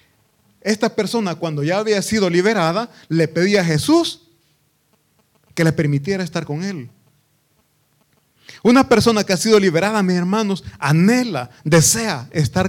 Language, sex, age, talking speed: Italian, male, 30-49, 130 wpm